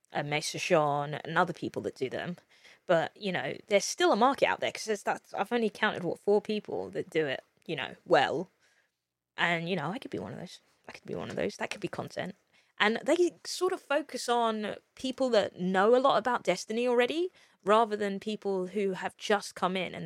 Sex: female